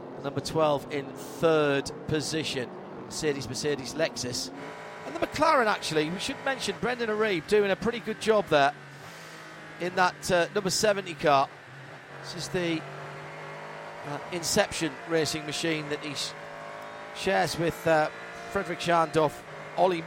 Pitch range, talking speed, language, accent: 140-180 Hz, 135 wpm, English, British